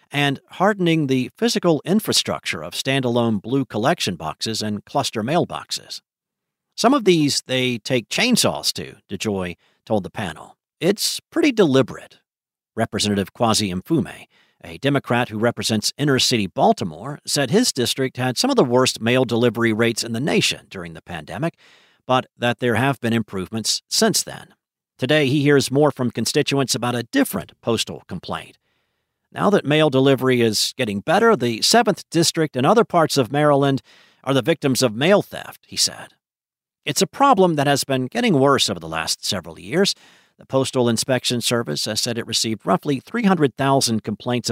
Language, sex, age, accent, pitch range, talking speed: English, male, 50-69, American, 115-150 Hz, 160 wpm